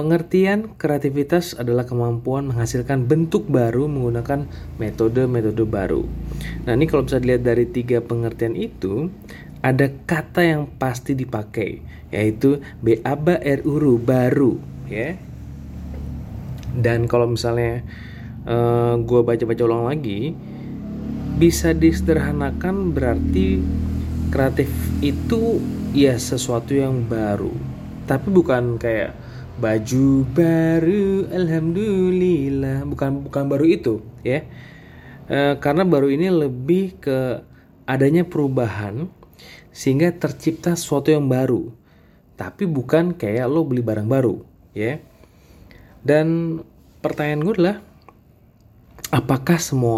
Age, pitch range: 20-39, 115-150 Hz